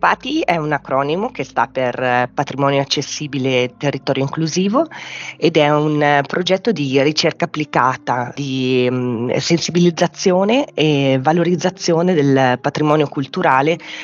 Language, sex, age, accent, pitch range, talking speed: Italian, female, 30-49, native, 135-180 Hz, 110 wpm